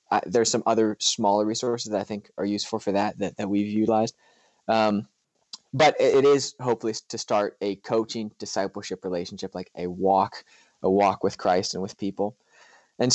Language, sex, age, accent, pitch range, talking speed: English, male, 20-39, American, 100-120 Hz, 180 wpm